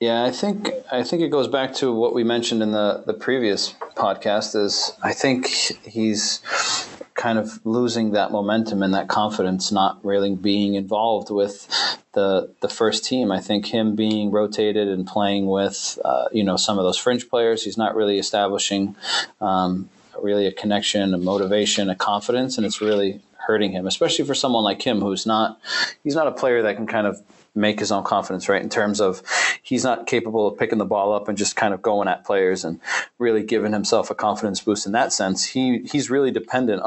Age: 30-49